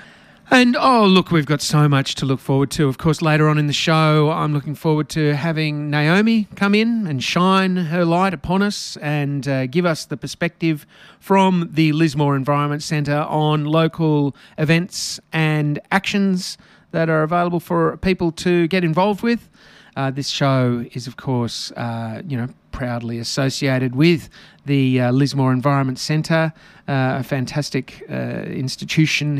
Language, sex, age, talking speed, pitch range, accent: English, male, 40-59, 160 wpm, 130-165 Hz, Australian